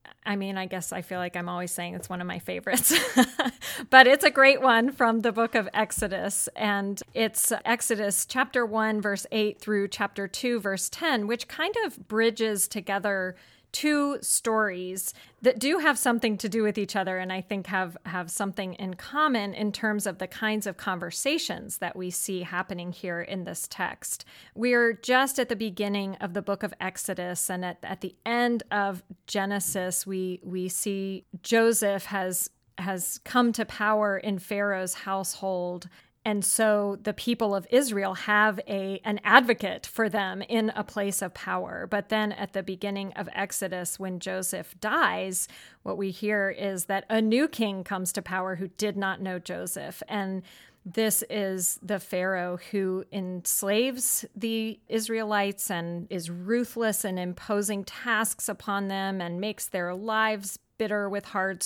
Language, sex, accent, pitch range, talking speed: English, female, American, 190-225 Hz, 170 wpm